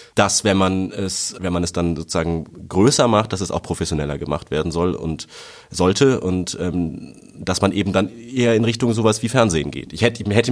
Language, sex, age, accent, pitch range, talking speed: German, male, 30-49, German, 90-110 Hz, 205 wpm